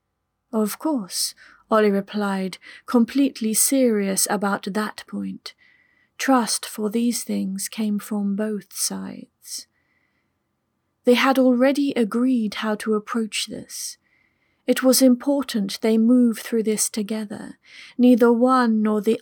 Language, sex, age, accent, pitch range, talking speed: English, female, 30-49, British, 210-250 Hz, 115 wpm